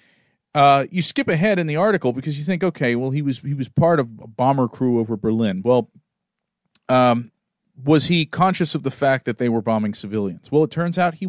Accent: American